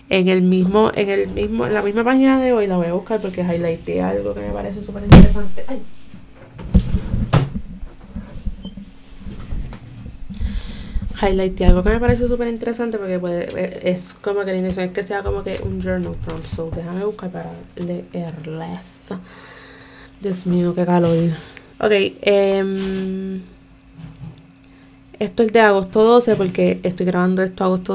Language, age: Spanish, 20-39